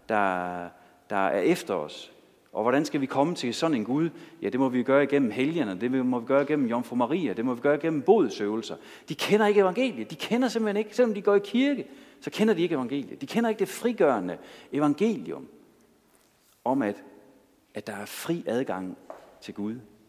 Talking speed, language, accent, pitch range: 200 wpm, Danish, native, 110-180 Hz